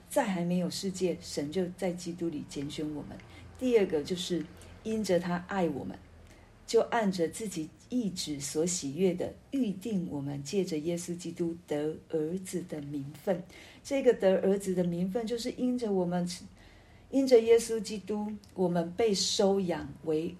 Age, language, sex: 50-69, Chinese, female